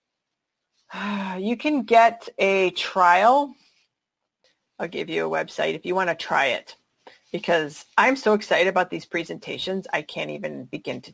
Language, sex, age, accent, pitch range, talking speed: English, female, 40-59, American, 180-230 Hz, 150 wpm